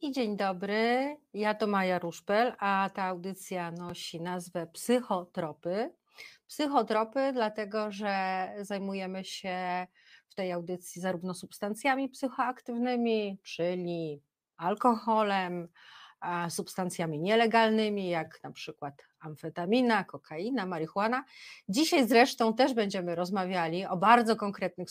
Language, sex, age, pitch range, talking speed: Polish, female, 30-49, 185-230 Hz, 100 wpm